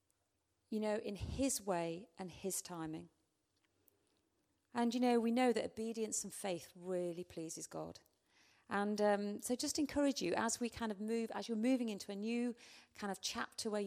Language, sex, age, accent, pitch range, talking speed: Danish, female, 40-59, British, 175-235 Hz, 175 wpm